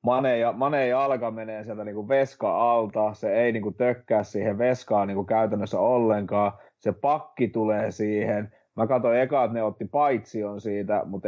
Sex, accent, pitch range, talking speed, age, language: male, native, 105-120 Hz, 160 wpm, 30-49, Finnish